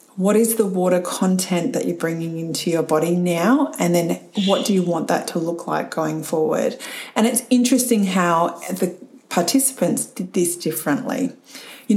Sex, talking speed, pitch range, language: female, 170 wpm, 180-235 Hz, English